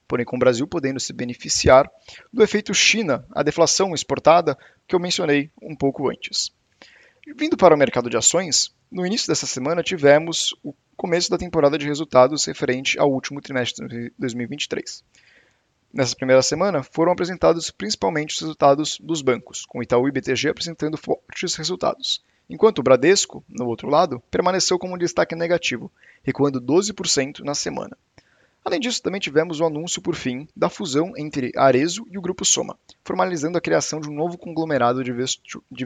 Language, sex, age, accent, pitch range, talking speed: Portuguese, male, 20-39, Brazilian, 135-185 Hz, 165 wpm